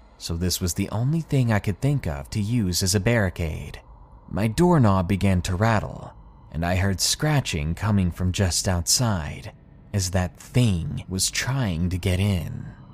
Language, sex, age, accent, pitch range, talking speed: English, male, 30-49, American, 95-130 Hz, 165 wpm